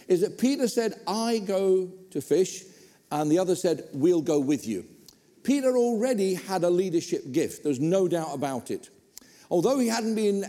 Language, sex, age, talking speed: English, male, 50-69, 175 wpm